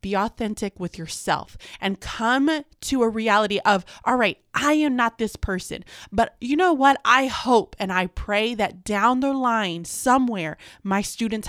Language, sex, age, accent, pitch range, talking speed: English, female, 20-39, American, 175-225 Hz, 170 wpm